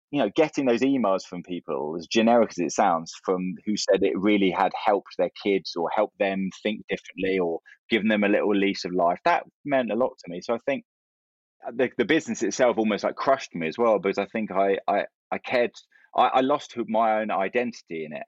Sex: male